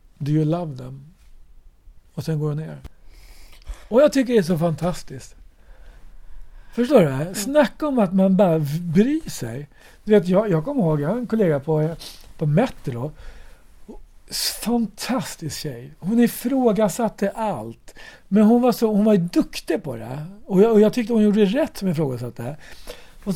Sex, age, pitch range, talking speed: male, 60-79, 145-220 Hz, 165 wpm